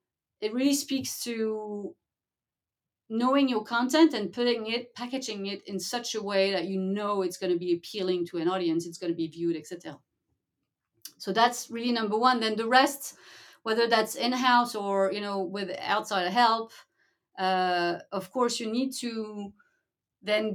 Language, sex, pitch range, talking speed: English, female, 185-220 Hz, 165 wpm